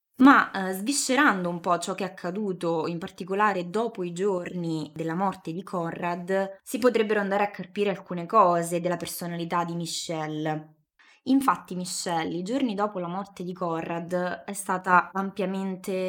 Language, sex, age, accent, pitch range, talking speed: Italian, female, 20-39, native, 160-190 Hz, 155 wpm